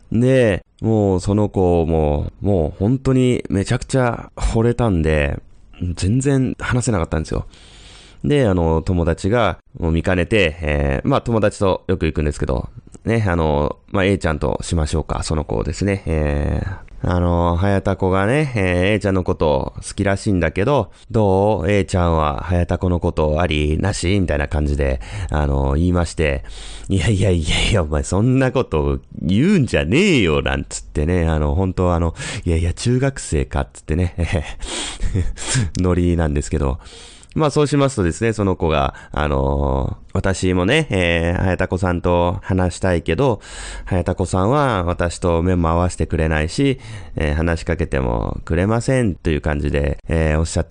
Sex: male